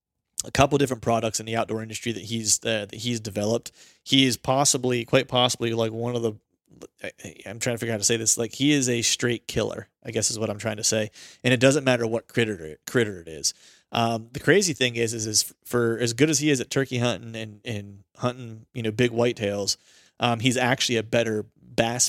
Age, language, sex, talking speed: 30-49, English, male, 235 wpm